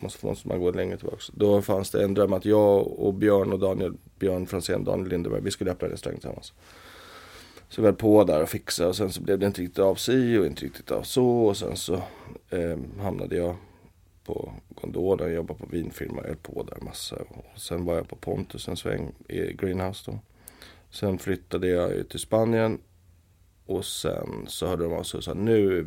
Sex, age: male, 30-49